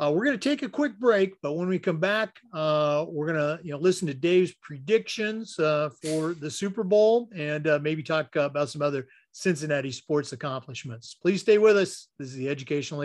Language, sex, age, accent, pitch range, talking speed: English, male, 50-69, American, 140-180 Hz, 210 wpm